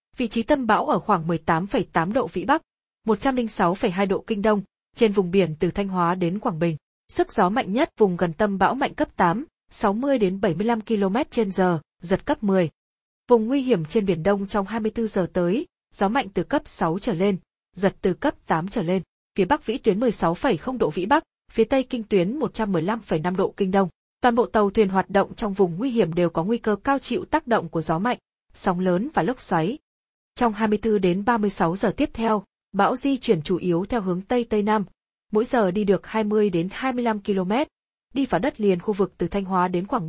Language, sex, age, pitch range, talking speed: Vietnamese, female, 20-39, 185-245 Hz, 225 wpm